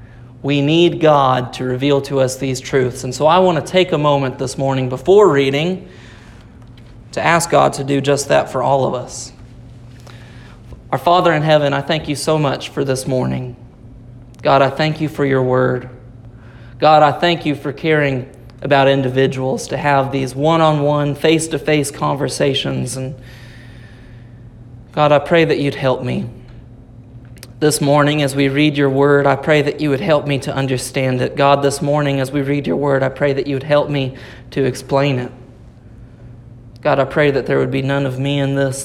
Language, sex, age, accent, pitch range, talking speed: English, male, 30-49, American, 125-145 Hz, 185 wpm